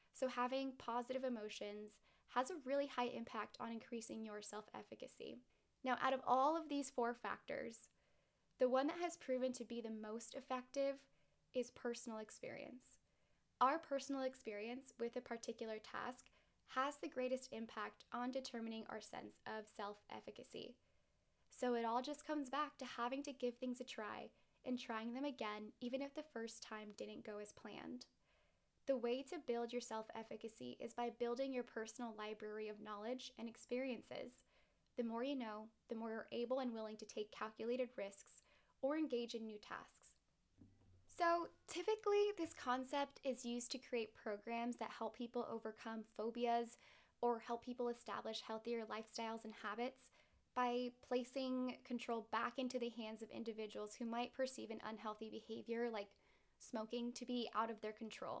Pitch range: 220-260 Hz